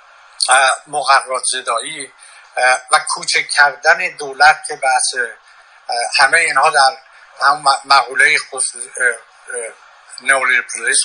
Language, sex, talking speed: English, male, 80 wpm